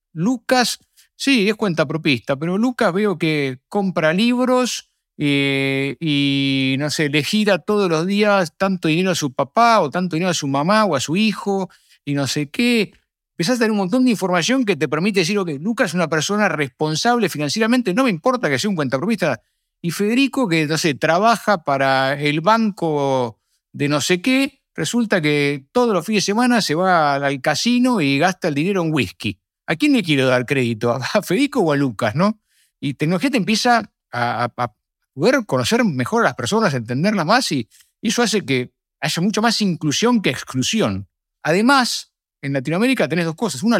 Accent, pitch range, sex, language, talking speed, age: Argentinian, 140-210 Hz, male, Spanish, 190 wpm, 50-69